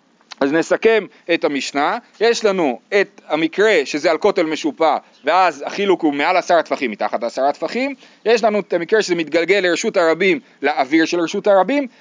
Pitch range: 165-235 Hz